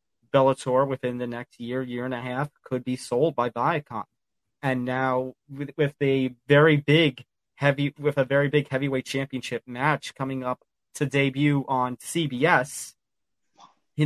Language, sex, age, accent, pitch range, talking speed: English, male, 20-39, American, 125-145 Hz, 155 wpm